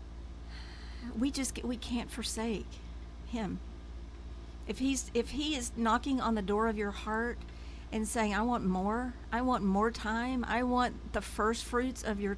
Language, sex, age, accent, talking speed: English, female, 50-69, American, 165 wpm